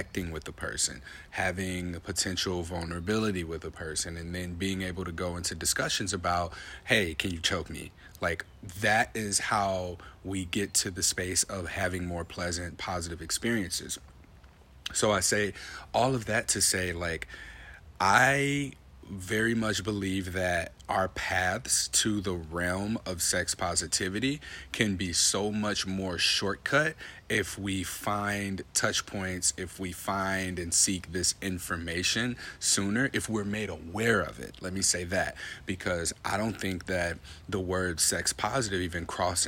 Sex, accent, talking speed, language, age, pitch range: male, American, 155 wpm, English, 40-59, 85-100 Hz